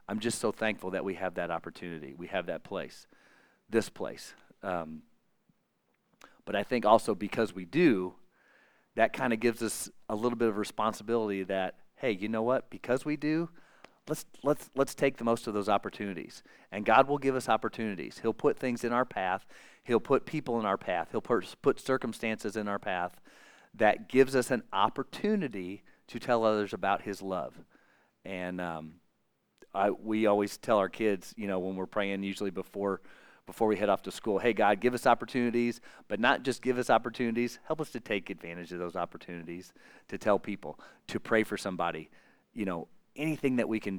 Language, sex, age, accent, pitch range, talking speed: English, male, 40-59, American, 95-120 Hz, 190 wpm